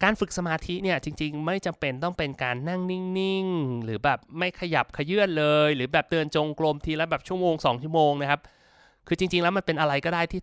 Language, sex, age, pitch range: Thai, male, 20-39, 130-180 Hz